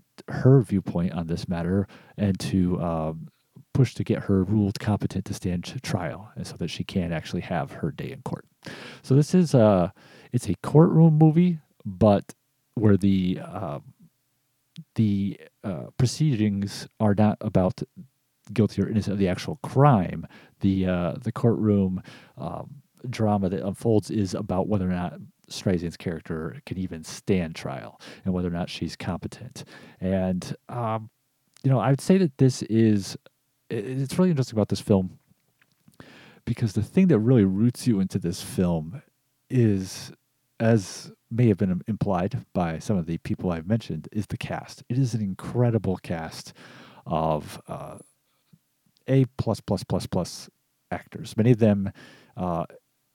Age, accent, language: 40-59, American, English